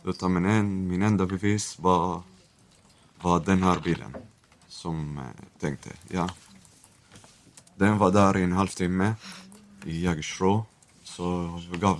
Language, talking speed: Swedish, 130 wpm